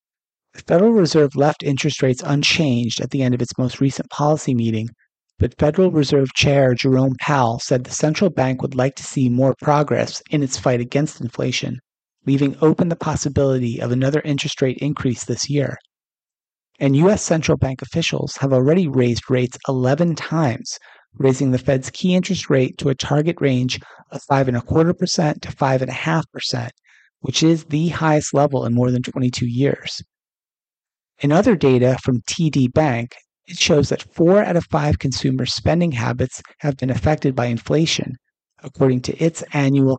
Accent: American